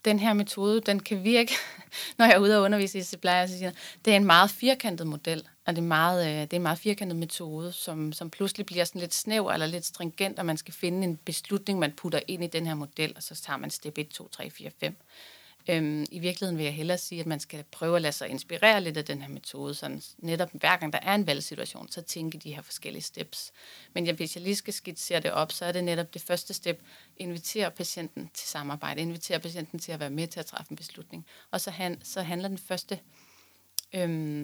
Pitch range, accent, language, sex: 160-190 Hz, native, Danish, female